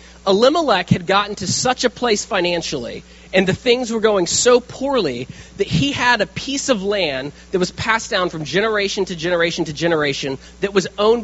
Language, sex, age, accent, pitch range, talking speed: English, male, 30-49, American, 160-225 Hz, 185 wpm